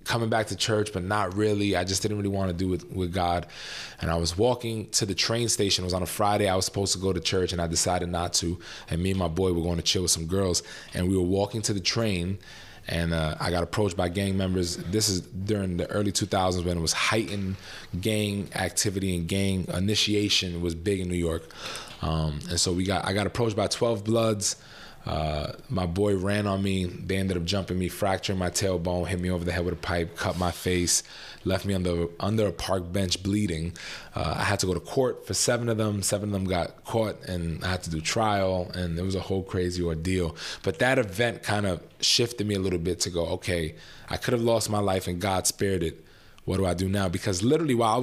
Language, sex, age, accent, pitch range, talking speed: English, male, 20-39, American, 90-105 Hz, 245 wpm